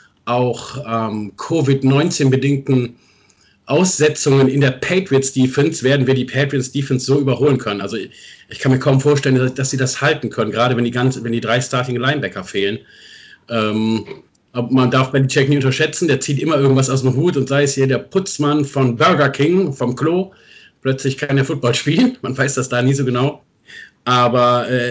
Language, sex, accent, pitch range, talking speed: German, male, German, 125-145 Hz, 180 wpm